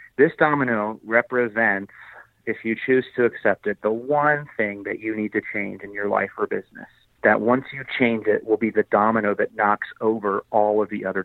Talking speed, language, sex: 205 wpm, English, male